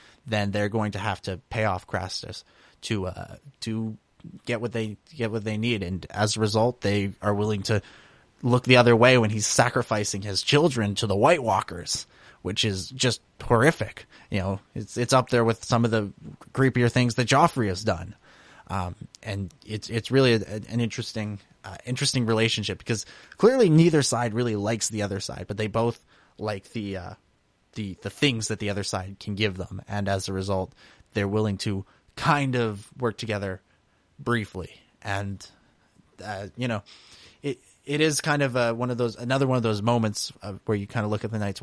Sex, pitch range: male, 100-125 Hz